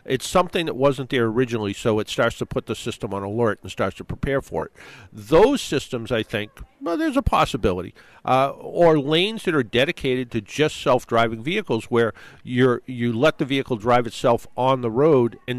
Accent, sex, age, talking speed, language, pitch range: American, male, 50-69, 195 wpm, English, 110-135 Hz